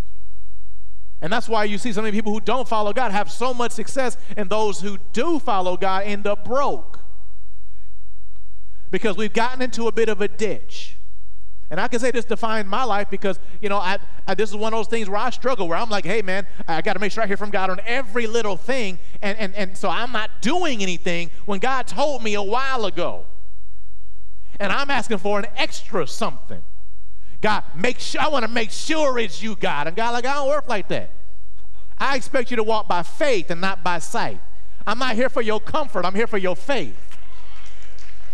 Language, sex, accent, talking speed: English, male, American, 215 wpm